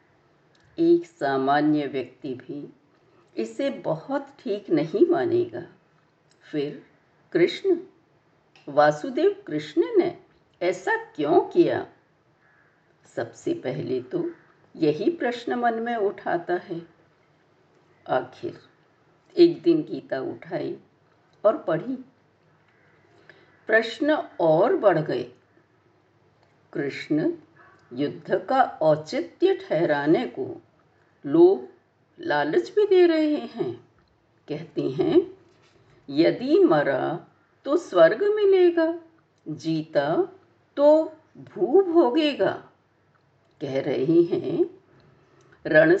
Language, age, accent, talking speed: Hindi, 60-79, native, 80 wpm